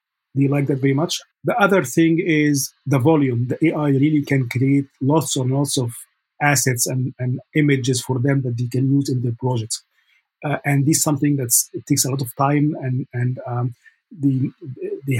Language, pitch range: English, 130-150 Hz